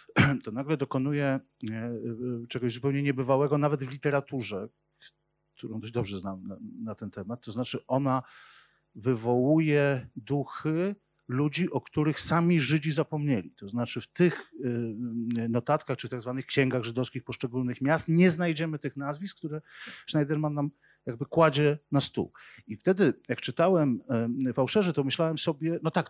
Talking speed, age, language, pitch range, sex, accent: 145 wpm, 50-69, Polish, 125-155 Hz, male, native